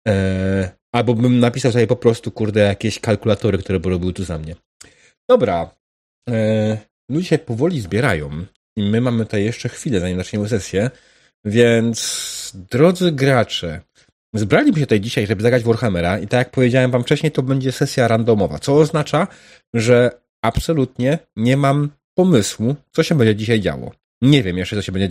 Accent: native